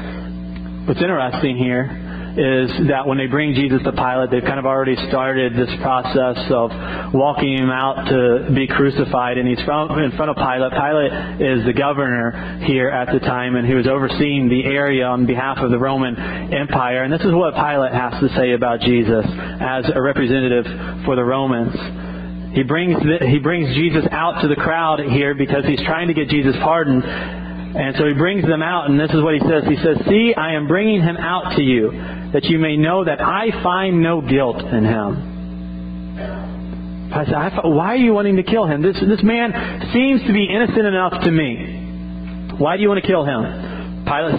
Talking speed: 190 wpm